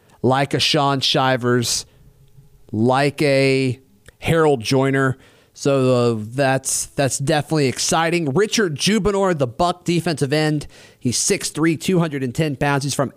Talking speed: 120 wpm